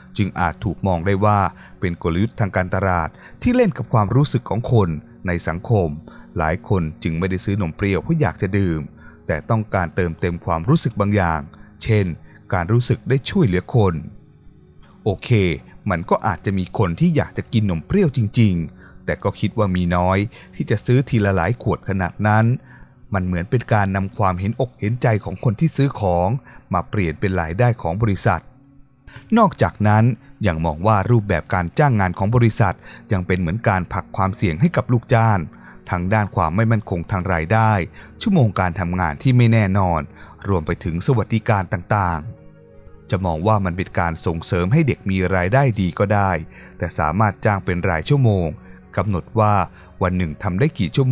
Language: Thai